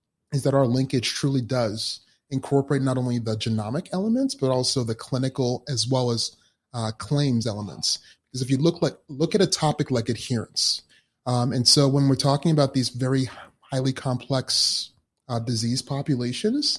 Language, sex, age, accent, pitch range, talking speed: English, male, 30-49, American, 120-145 Hz, 165 wpm